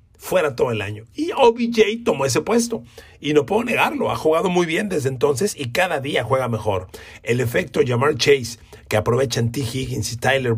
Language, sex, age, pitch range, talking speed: Spanish, male, 40-59, 115-180 Hz, 185 wpm